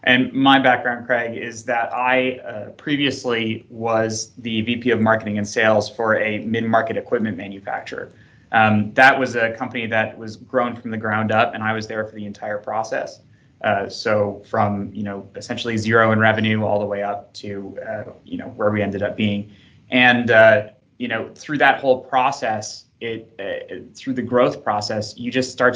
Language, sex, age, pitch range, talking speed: English, male, 20-39, 105-120 Hz, 185 wpm